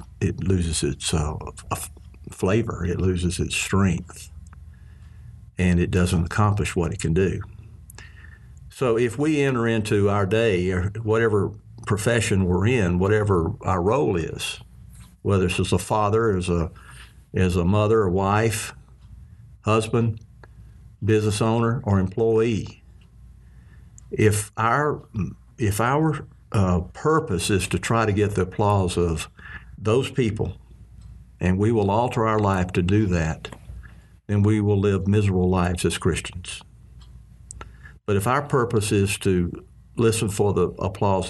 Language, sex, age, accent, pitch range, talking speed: English, male, 60-79, American, 90-110 Hz, 135 wpm